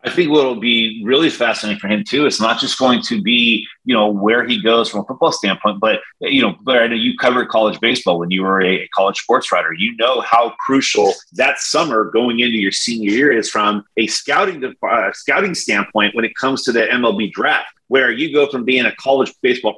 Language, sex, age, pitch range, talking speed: English, male, 30-49, 110-135 Hz, 230 wpm